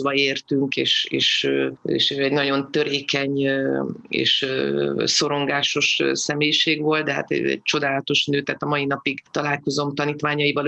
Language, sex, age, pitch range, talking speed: Hungarian, female, 30-49, 140-155 Hz, 125 wpm